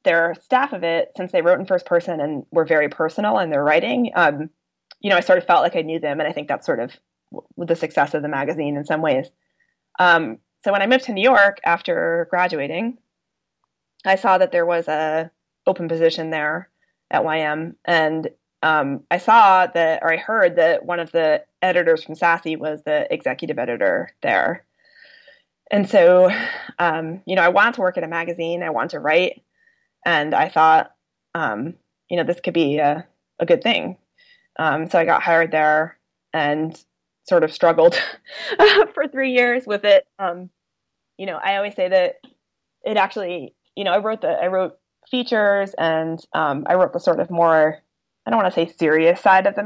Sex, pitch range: female, 160-205 Hz